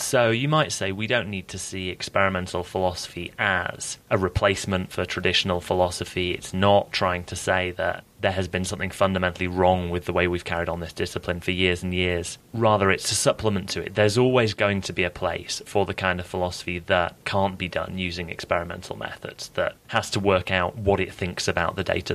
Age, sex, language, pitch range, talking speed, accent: 30-49, male, English, 90-110 Hz, 210 wpm, British